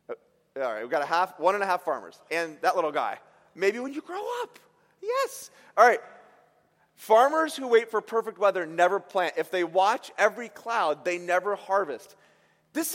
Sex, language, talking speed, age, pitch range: male, English, 185 wpm, 30-49, 200-320 Hz